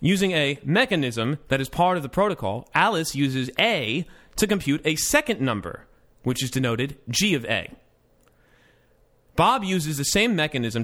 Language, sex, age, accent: English, male, 30-49, American